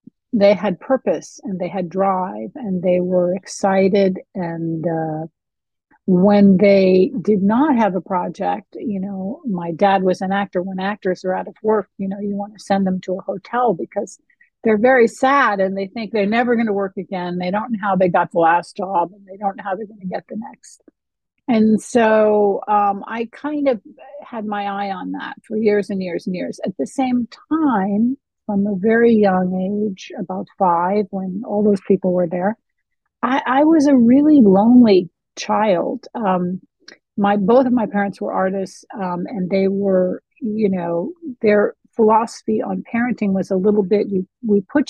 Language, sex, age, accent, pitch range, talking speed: English, female, 50-69, American, 190-230 Hz, 190 wpm